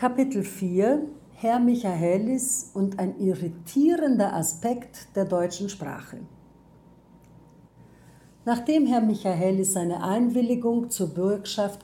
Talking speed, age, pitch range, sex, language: 90 wpm, 60-79, 175-235 Hz, female, German